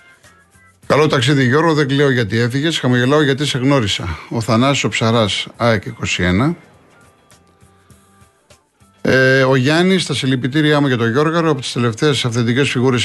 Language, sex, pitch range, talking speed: Greek, male, 110-145 Hz, 145 wpm